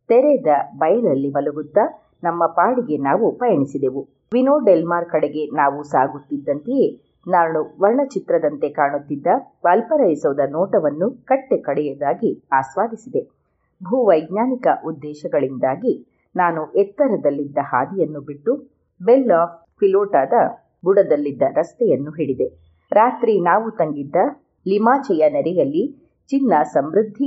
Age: 30-49